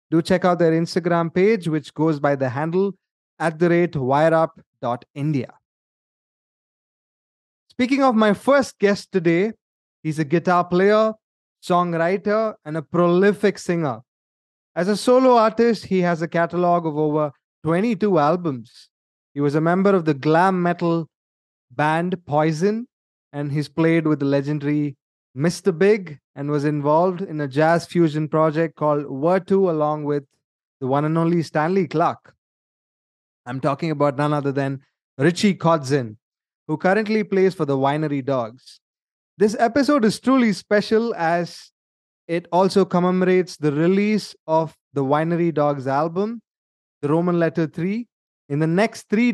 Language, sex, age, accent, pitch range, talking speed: English, male, 20-39, Indian, 150-195 Hz, 140 wpm